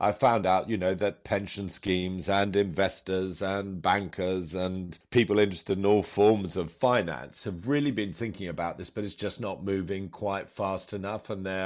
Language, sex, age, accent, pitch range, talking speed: English, male, 40-59, British, 90-105 Hz, 185 wpm